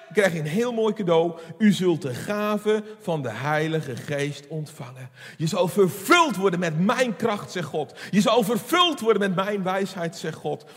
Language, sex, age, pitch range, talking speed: Dutch, male, 40-59, 160-225 Hz, 185 wpm